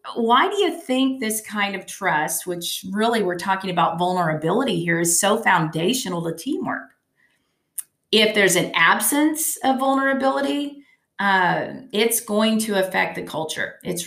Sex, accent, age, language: female, American, 40-59, English